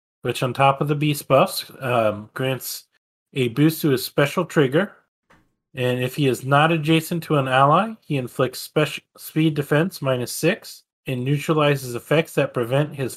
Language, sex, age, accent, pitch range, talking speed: English, male, 30-49, American, 130-160 Hz, 165 wpm